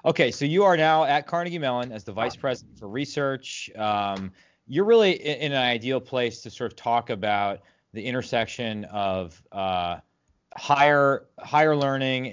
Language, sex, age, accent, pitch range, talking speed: English, male, 30-49, American, 105-145 Hz, 160 wpm